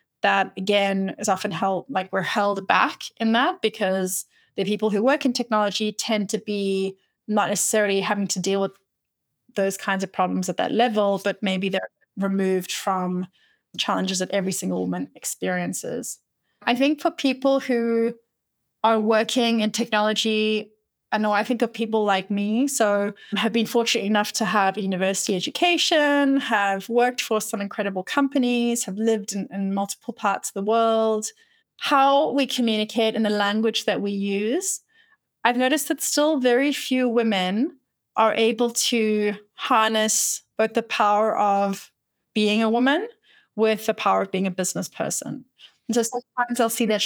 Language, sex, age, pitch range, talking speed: English, female, 30-49, 200-235 Hz, 165 wpm